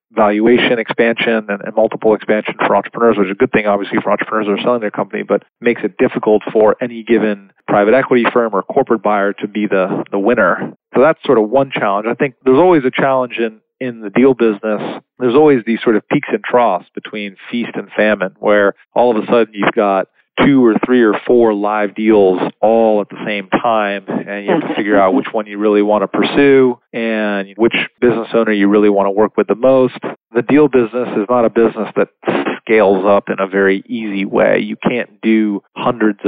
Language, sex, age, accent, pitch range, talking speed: English, male, 40-59, American, 100-120 Hz, 215 wpm